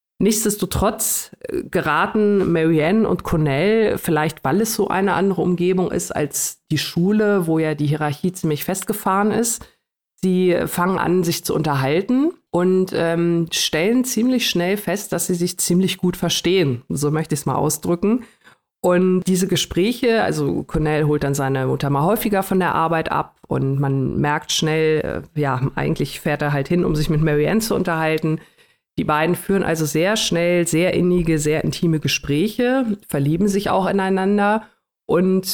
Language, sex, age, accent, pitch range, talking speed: German, female, 50-69, German, 150-190 Hz, 160 wpm